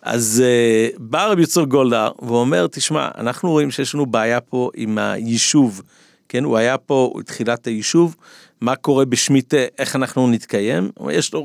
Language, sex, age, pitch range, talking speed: Hebrew, male, 50-69, 120-160 Hz, 155 wpm